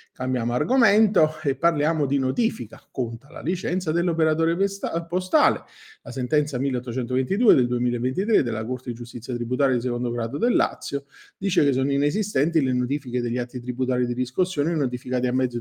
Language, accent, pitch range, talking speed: Italian, native, 120-155 Hz, 155 wpm